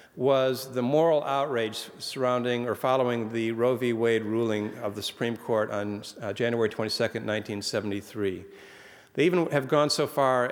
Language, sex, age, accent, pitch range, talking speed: English, male, 50-69, American, 115-140 Hz, 155 wpm